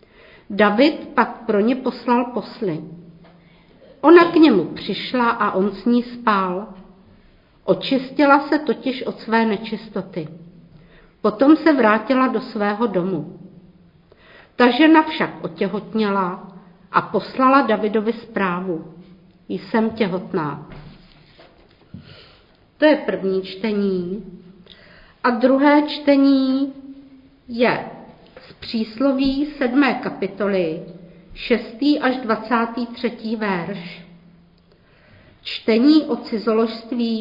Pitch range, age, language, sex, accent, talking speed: 195-270 Hz, 50-69, Czech, female, native, 90 wpm